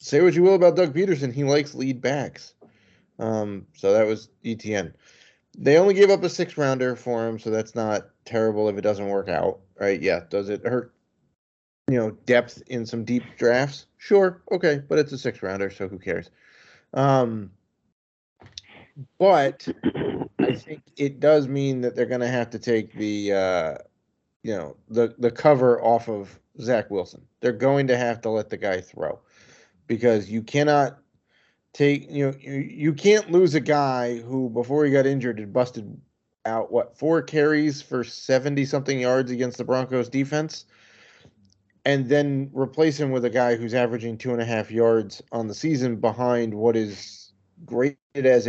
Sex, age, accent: male, 30-49, American